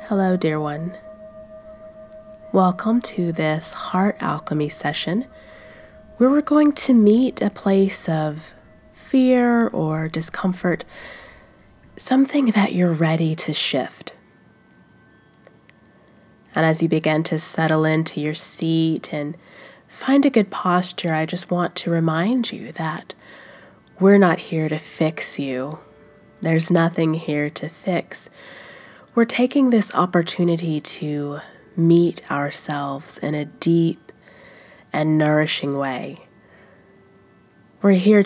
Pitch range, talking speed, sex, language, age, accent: 155-195 Hz, 115 wpm, female, English, 20-39, American